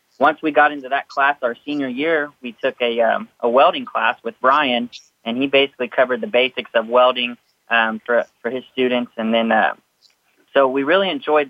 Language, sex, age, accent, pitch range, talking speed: English, male, 30-49, American, 115-140 Hz, 200 wpm